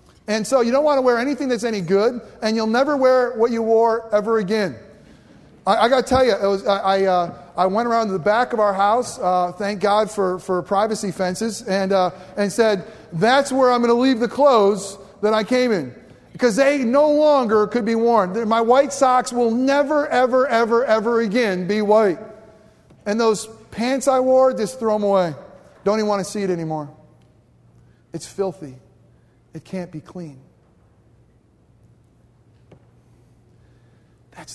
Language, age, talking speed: English, 40-59, 180 wpm